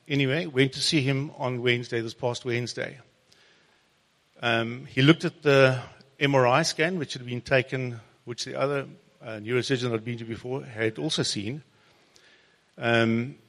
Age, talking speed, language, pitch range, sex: 60-79, 150 wpm, English, 125-155 Hz, male